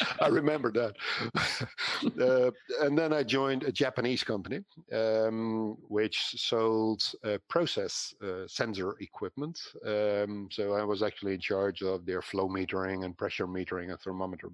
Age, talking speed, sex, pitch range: 50-69, 145 wpm, male, 90-100 Hz